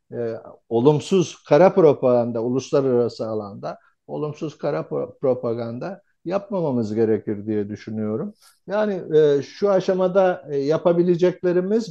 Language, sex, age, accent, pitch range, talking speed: Turkish, male, 60-79, native, 125-180 Hz, 95 wpm